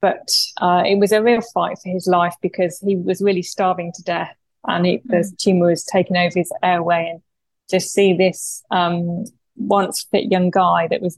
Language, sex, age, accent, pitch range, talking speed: English, female, 20-39, British, 180-200 Hz, 200 wpm